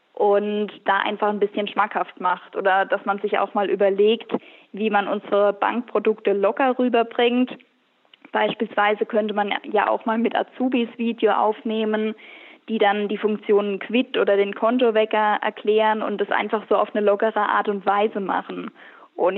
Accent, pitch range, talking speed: German, 205-230 Hz, 160 wpm